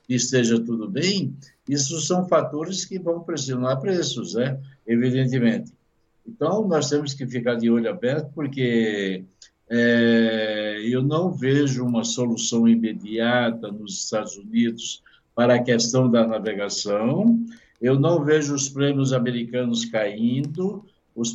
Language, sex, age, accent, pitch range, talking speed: Portuguese, male, 60-79, Brazilian, 120-150 Hz, 125 wpm